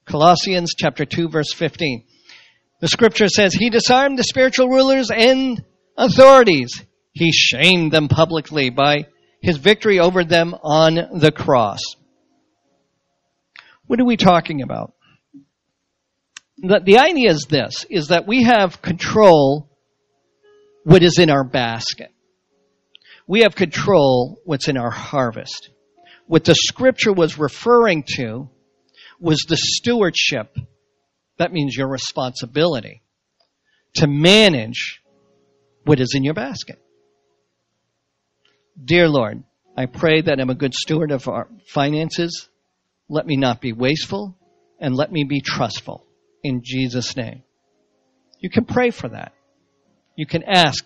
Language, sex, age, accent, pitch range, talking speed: English, male, 50-69, American, 130-180 Hz, 125 wpm